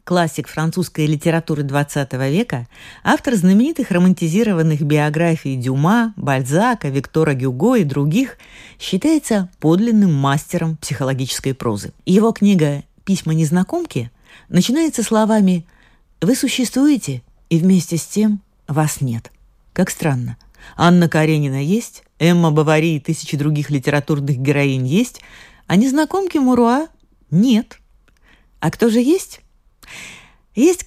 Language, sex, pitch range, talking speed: Russian, female, 145-210 Hz, 110 wpm